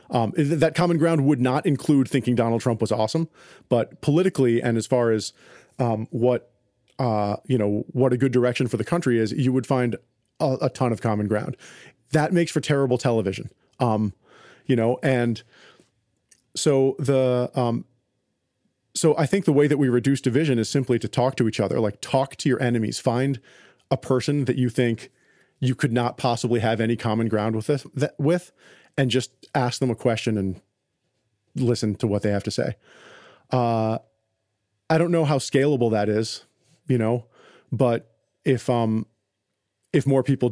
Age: 40-59